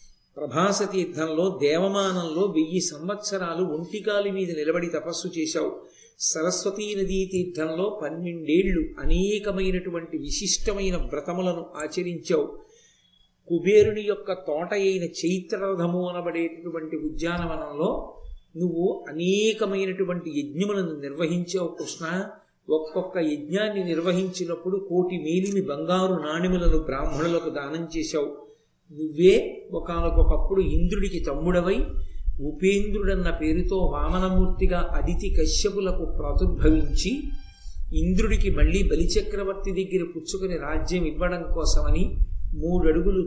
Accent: native